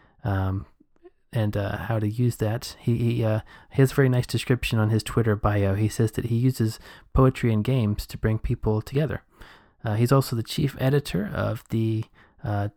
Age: 20-39